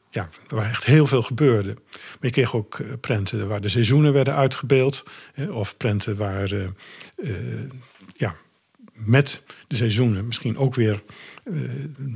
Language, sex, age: Dutch, male, 50-69